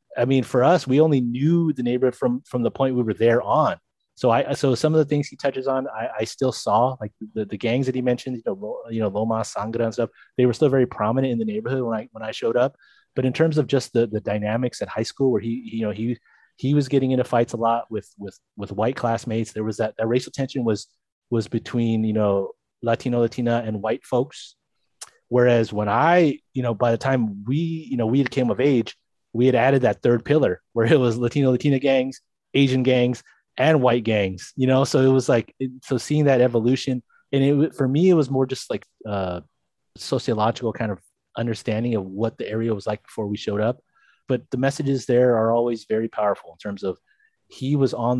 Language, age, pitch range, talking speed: English, 30-49, 110-130 Hz, 230 wpm